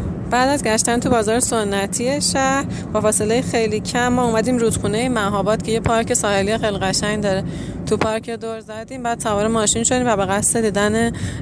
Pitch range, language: 130-225 Hz, Persian